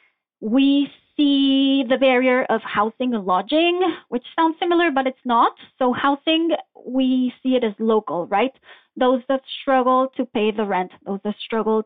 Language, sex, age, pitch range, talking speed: English, female, 20-39, 220-275 Hz, 160 wpm